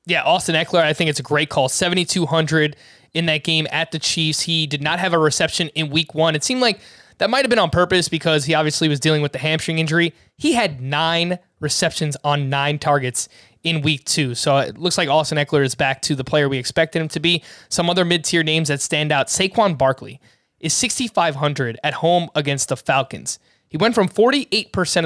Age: 20-39